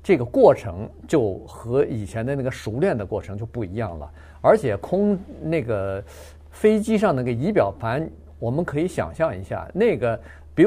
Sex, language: male, Chinese